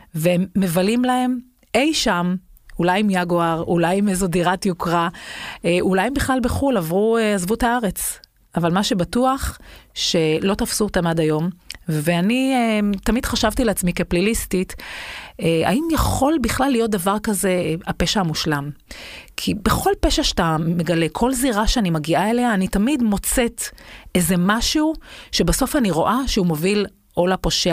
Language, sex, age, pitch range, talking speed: Hebrew, female, 30-49, 175-235 Hz, 145 wpm